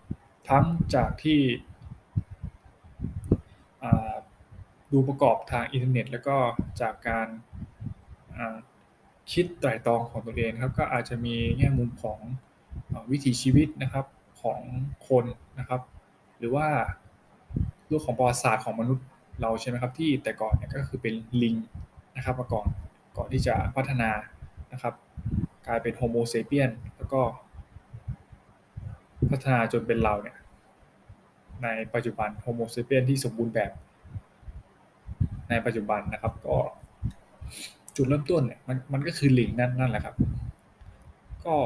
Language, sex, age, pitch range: Thai, male, 20-39, 115-130 Hz